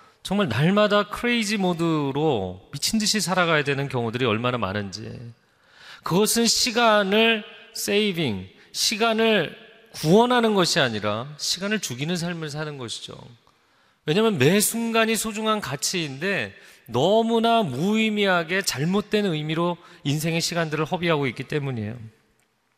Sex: male